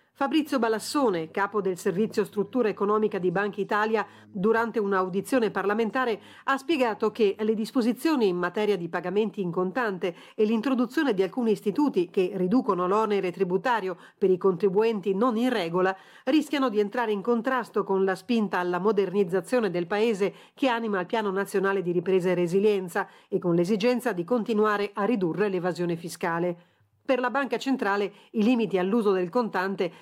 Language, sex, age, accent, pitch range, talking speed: Italian, female, 40-59, native, 185-225 Hz, 155 wpm